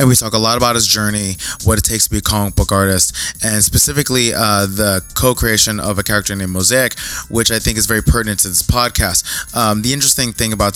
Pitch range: 100-120 Hz